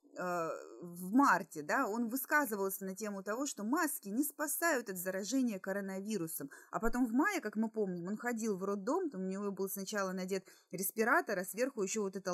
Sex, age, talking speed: female, 20-39, 180 wpm